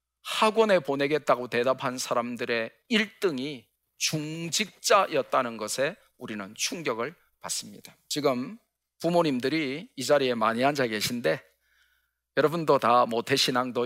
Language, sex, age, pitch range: Korean, male, 40-59, 125-205 Hz